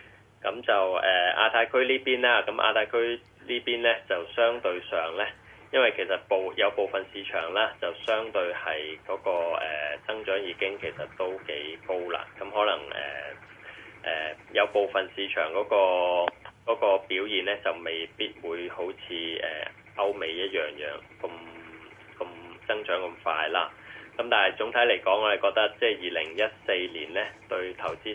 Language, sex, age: Chinese, male, 20-39